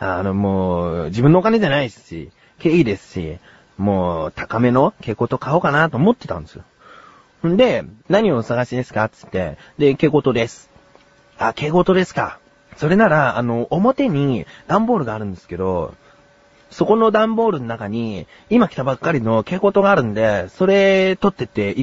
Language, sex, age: Japanese, male, 30-49